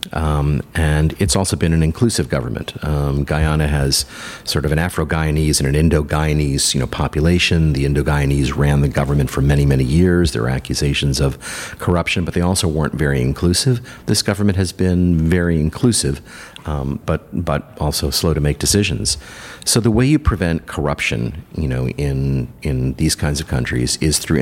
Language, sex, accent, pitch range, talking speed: English, male, American, 70-90 Hz, 175 wpm